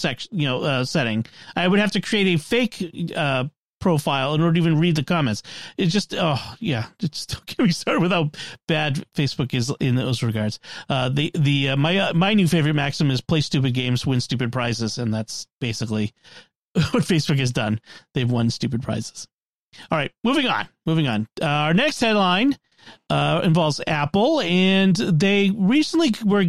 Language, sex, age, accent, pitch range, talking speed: English, male, 40-59, American, 135-195 Hz, 185 wpm